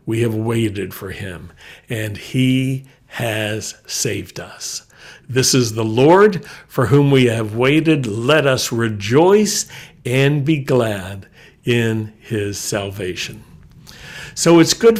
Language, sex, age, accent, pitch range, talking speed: English, male, 60-79, American, 115-155 Hz, 125 wpm